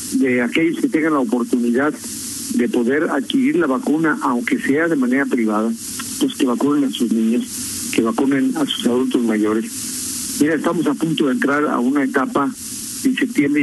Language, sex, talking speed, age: Spanish, male, 170 wpm, 50-69